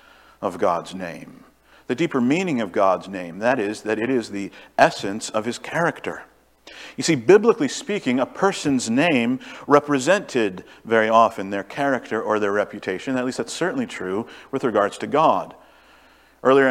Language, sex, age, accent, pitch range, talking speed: English, male, 50-69, American, 120-160 Hz, 160 wpm